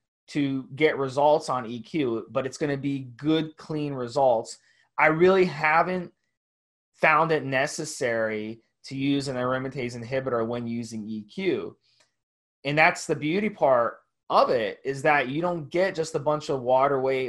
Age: 20-39